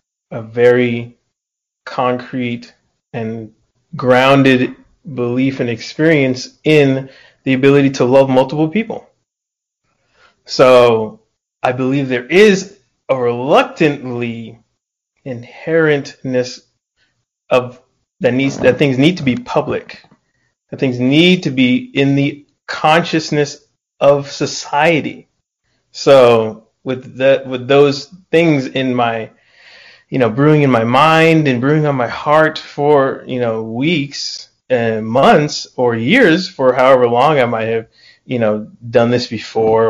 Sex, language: male, English